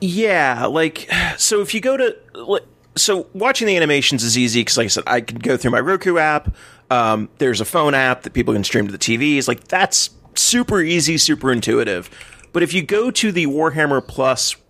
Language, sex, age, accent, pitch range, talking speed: English, male, 30-49, American, 125-170 Hz, 205 wpm